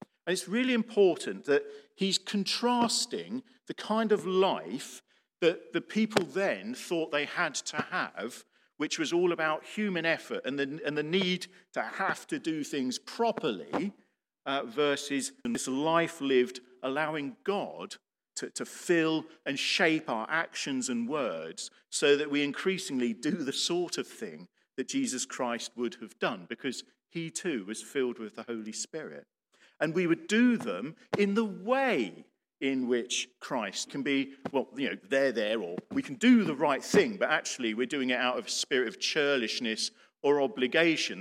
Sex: male